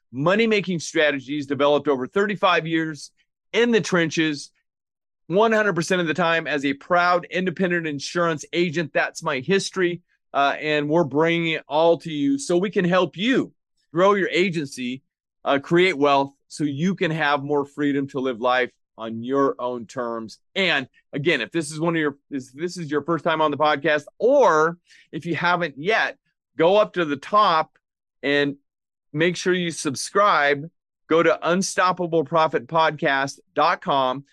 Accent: American